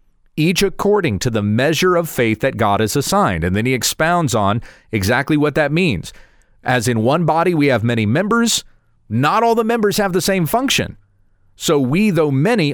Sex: male